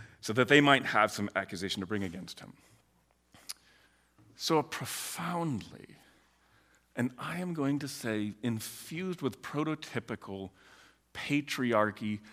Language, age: English, 40-59